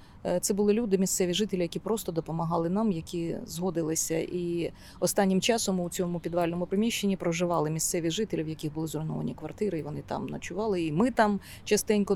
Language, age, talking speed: Ukrainian, 30-49, 170 wpm